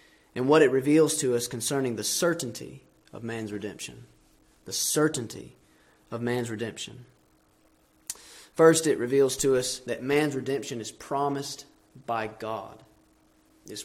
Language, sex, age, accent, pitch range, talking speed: English, male, 30-49, American, 115-155 Hz, 130 wpm